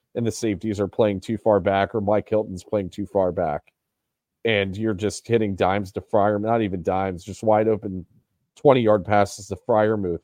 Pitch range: 95-110 Hz